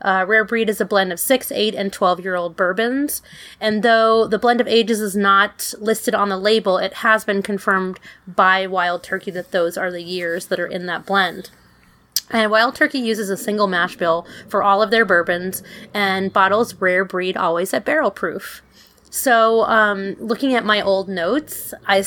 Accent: American